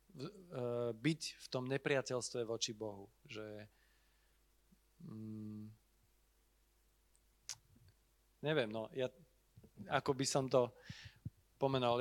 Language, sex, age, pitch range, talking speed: Slovak, male, 40-59, 115-135 Hz, 80 wpm